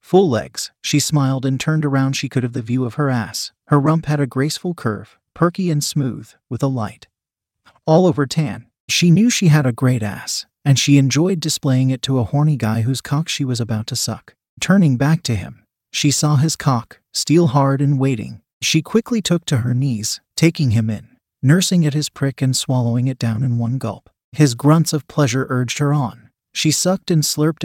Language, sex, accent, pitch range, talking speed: English, male, American, 125-150 Hz, 210 wpm